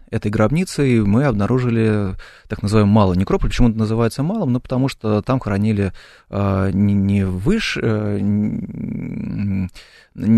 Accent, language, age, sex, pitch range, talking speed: native, Russian, 20-39, male, 95-115 Hz, 125 wpm